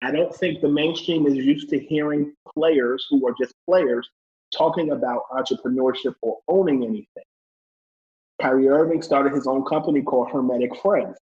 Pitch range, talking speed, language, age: 130-160 Hz, 155 wpm, English, 30-49